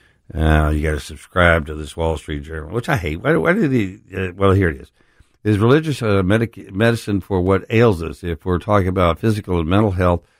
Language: English